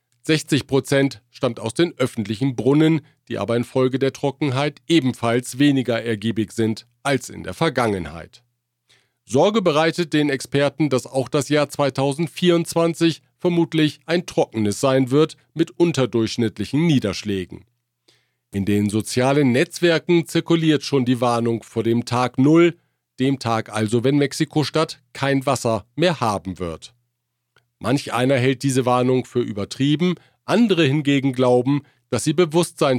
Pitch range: 115-150 Hz